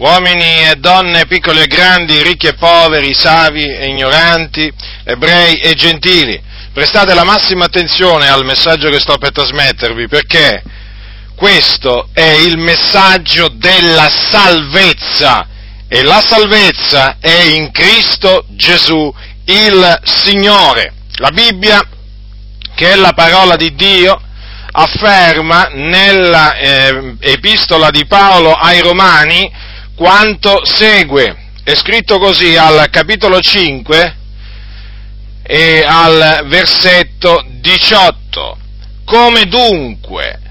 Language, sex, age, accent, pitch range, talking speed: Italian, male, 50-69, native, 145-200 Hz, 100 wpm